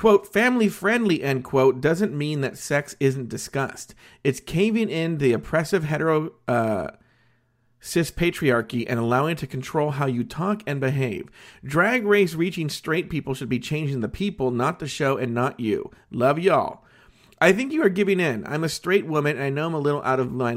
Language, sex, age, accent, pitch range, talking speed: English, male, 40-59, American, 125-175 Hz, 195 wpm